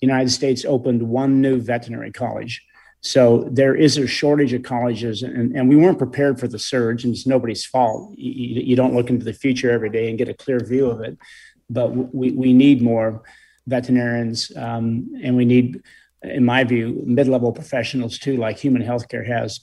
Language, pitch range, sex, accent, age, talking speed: English, 120-140 Hz, male, American, 50-69, 190 wpm